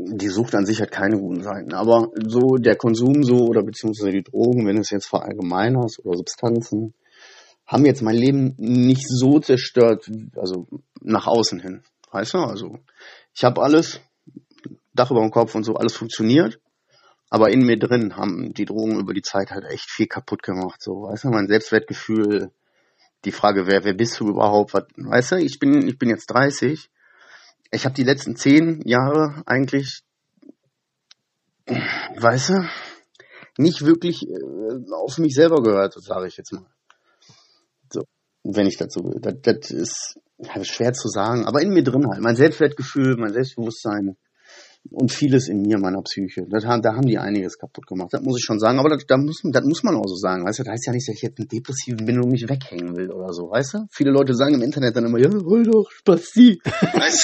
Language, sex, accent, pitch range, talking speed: German, male, German, 105-135 Hz, 195 wpm